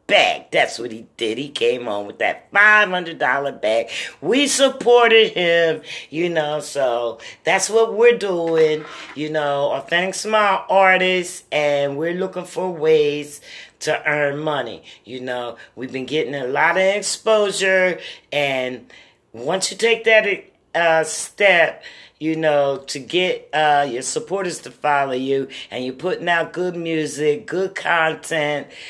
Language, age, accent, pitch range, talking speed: English, 50-69, American, 140-180 Hz, 145 wpm